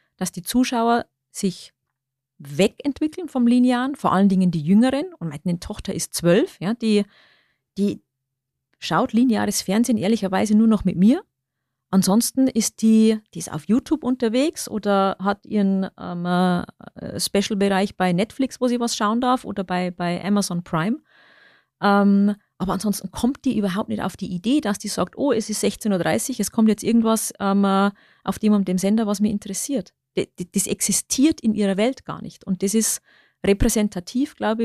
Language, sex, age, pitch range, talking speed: German, female, 40-59, 190-235 Hz, 165 wpm